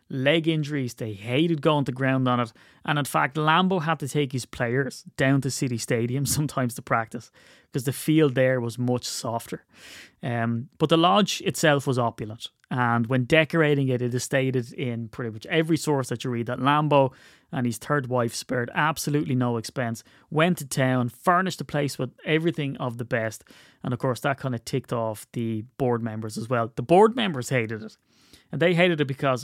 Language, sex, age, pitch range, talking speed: English, male, 30-49, 120-145 Hz, 200 wpm